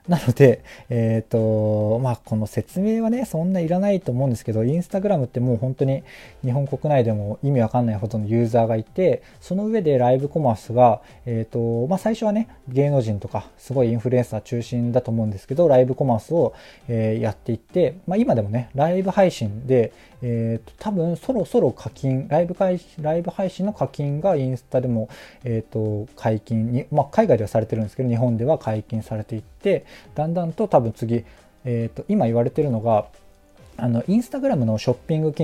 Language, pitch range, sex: Japanese, 115-170 Hz, male